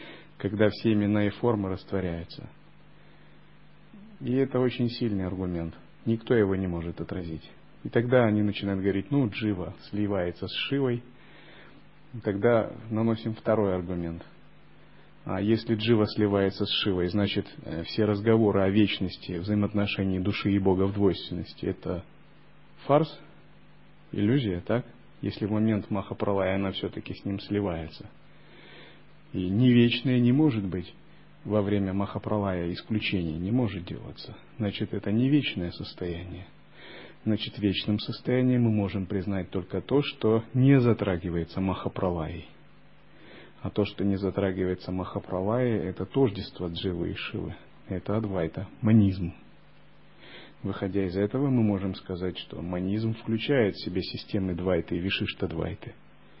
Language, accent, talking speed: Russian, native, 130 wpm